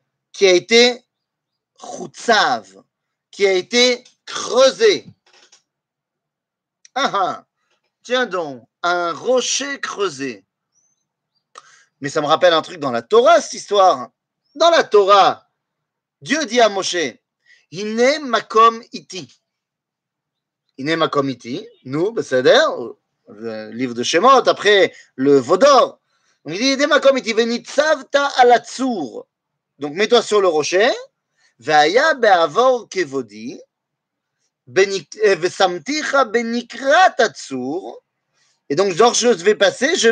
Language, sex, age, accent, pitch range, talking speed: French, male, 30-49, French, 175-275 Hz, 110 wpm